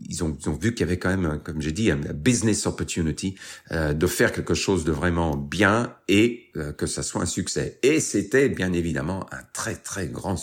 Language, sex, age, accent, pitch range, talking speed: French, male, 50-69, French, 80-115 Hz, 225 wpm